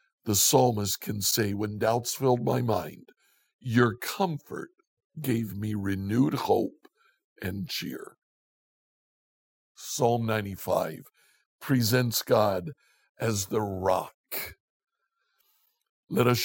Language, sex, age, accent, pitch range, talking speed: English, male, 60-79, American, 110-145 Hz, 95 wpm